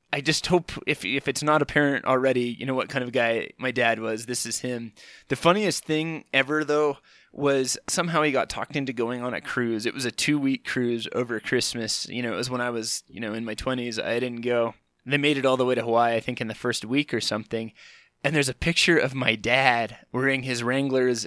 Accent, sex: American, male